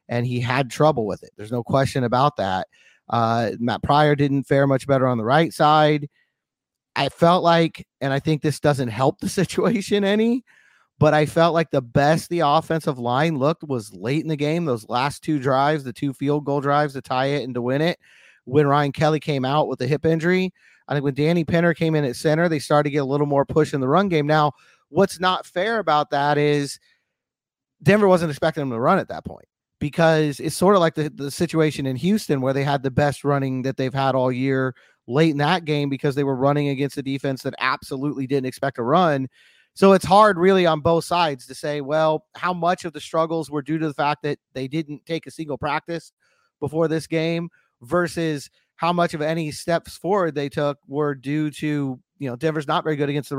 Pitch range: 135-165 Hz